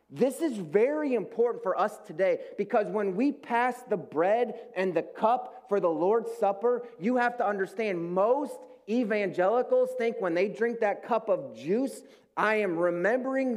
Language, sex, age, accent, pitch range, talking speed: English, male, 30-49, American, 175-245 Hz, 165 wpm